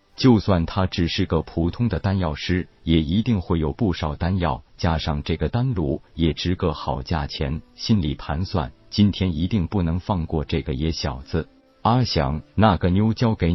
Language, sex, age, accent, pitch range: Chinese, male, 50-69, native, 80-105 Hz